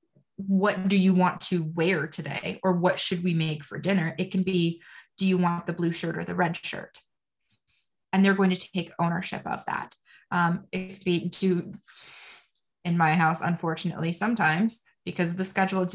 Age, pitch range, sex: 20-39, 175-200 Hz, female